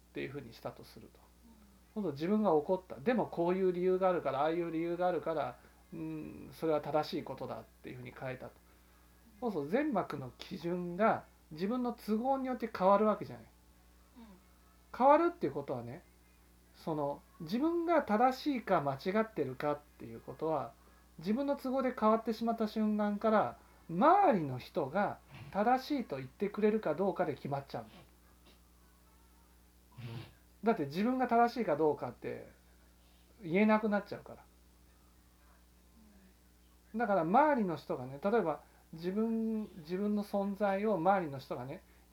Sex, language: male, Japanese